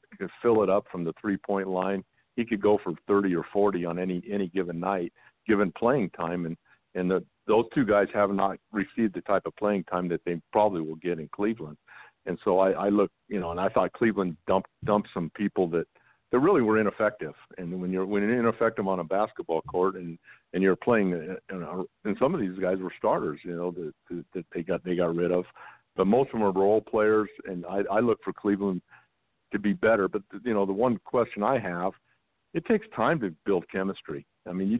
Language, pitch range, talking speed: English, 90-105 Hz, 220 wpm